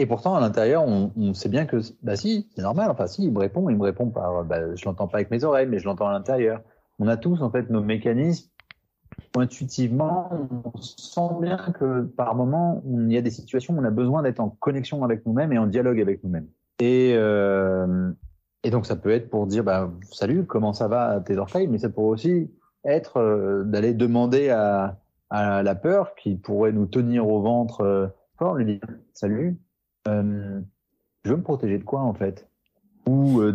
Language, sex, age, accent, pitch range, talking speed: French, male, 30-49, French, 105-130 Hz, 220 wpm